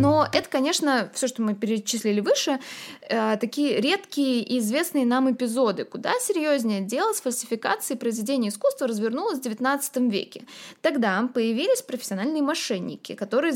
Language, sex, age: Russian, female, 20-39